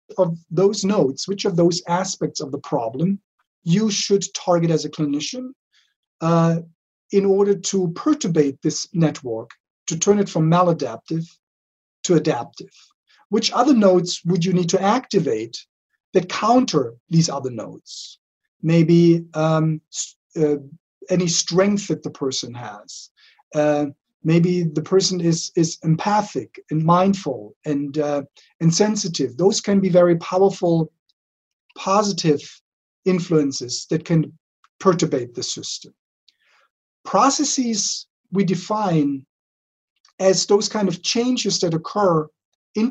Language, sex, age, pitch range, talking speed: English, male, 40-59, 155-195 Hz, 120 wpm